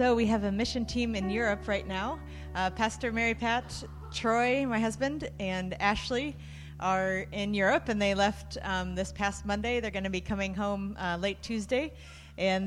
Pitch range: 190-230 Hz